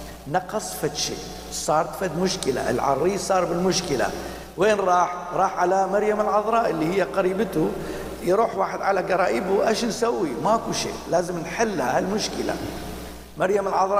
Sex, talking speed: male, 135 wpm